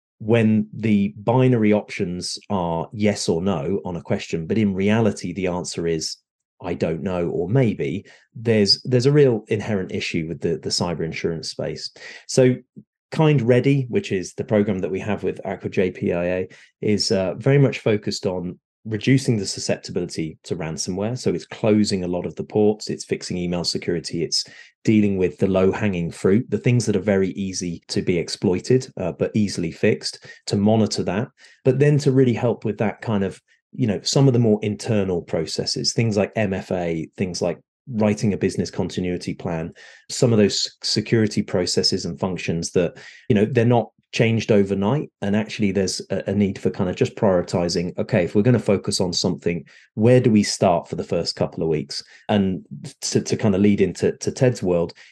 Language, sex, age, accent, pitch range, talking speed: English, male, 30-49, British, 95-115 Hz, 185 wpm